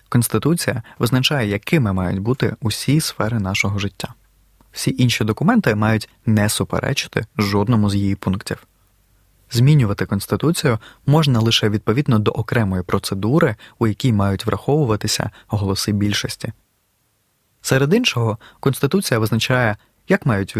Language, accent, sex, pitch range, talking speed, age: Ukrainian, native, male, 105-135 Hz, 115 wpm, 20-39